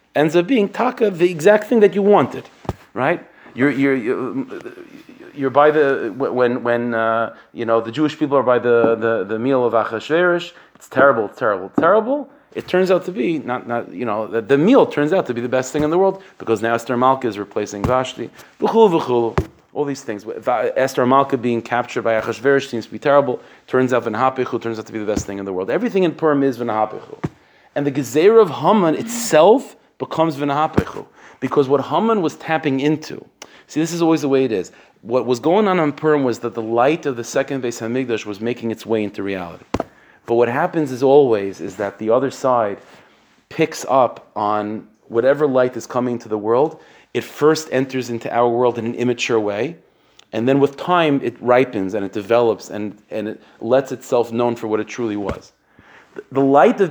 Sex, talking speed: male, 205 wpm